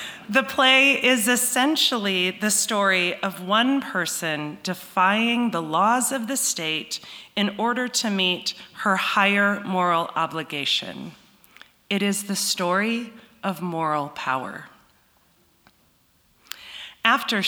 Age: 30-49